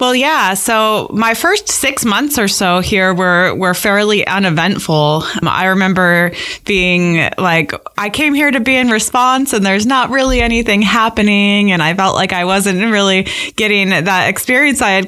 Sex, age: female, 20-39